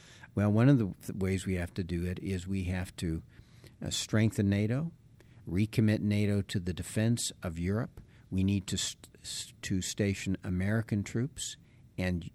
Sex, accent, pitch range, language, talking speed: male, American, 90-115 Hz, English, 160 wpm